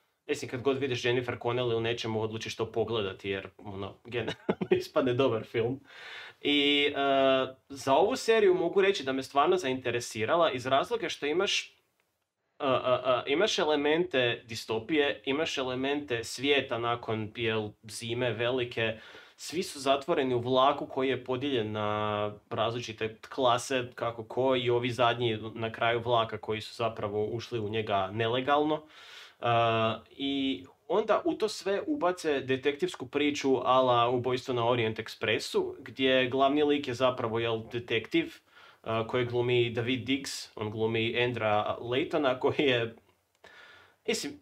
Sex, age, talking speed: male, 20-39, 140 wpm